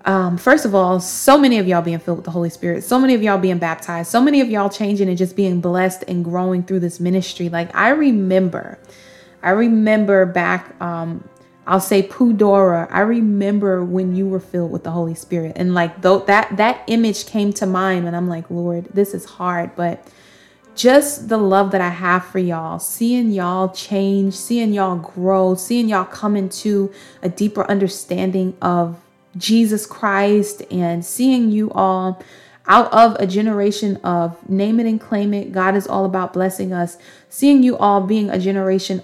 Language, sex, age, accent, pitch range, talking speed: English, female, 20-39, American, 180-210 Hz, 185 wpm